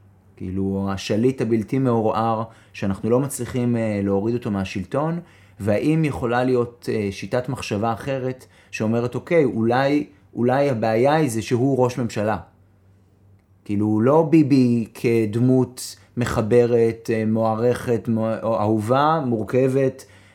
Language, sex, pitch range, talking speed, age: Hebrew, male, 105-140 Hz, 100 wpm, 30-49